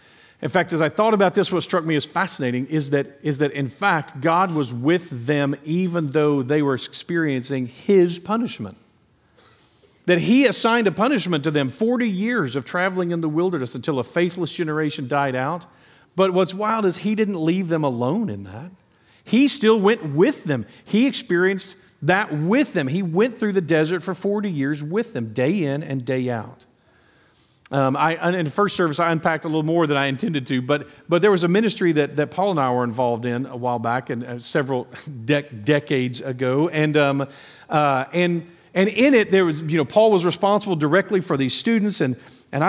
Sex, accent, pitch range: male, American, 135-185 Hz